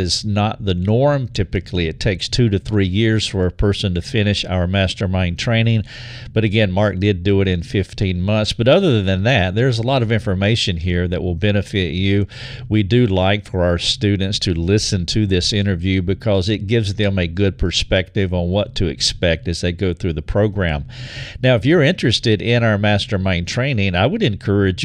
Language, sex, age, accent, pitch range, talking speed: English, male, 50-69, American, 95-120 Hz, 195 wpm